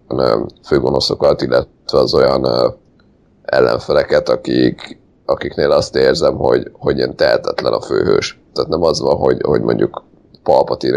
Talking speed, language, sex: 125 wpm, Hungarian, male